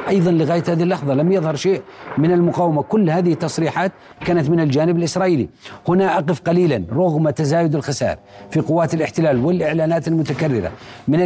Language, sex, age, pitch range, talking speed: Arabic, male, 40-59, 155-185 Hz, 150 wpm